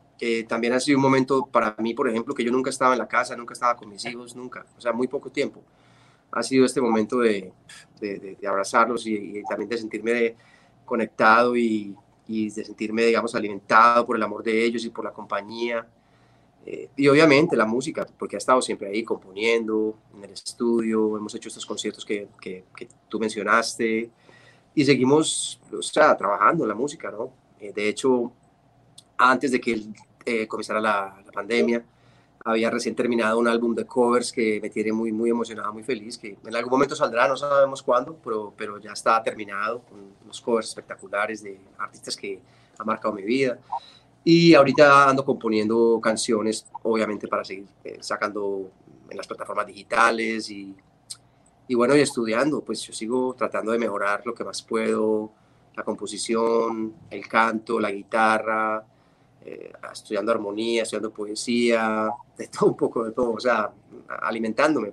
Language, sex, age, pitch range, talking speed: Spanish, male, 30-49, 110-120 Hz, 175 wpm